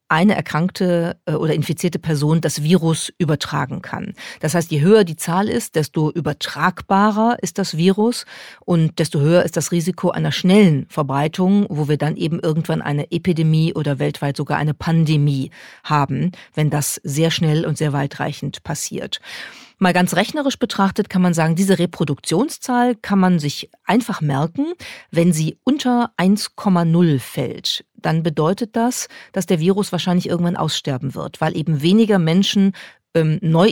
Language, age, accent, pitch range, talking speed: German, 40-59, German, 155-190 Hz, 155 wpm